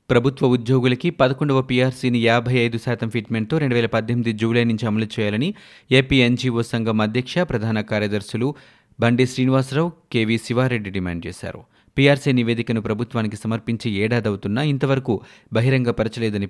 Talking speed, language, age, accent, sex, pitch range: 115 wpm, Telugu, 30-49, native, male, 110-130 Hz